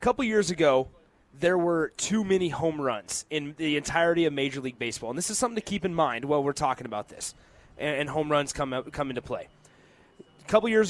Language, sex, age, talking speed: English, male, 30-49, 220 wpm